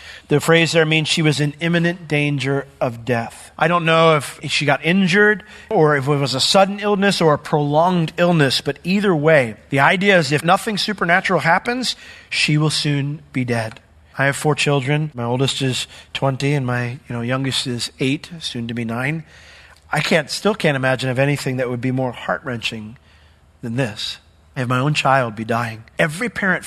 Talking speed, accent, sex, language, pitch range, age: 195 wpm, American, male, English, 125-155 Hz, 40-59